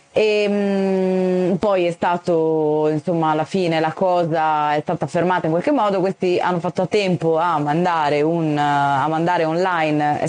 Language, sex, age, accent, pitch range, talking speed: Italian, female, 20-39, native, 155-185 Hz, 165 wpm